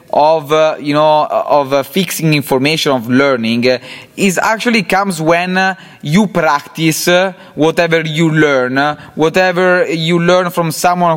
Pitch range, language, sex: 150-185 Hz, English, male